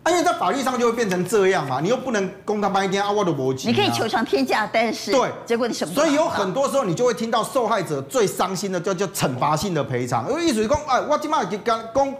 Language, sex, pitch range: Chinese, male, 155-230 Hz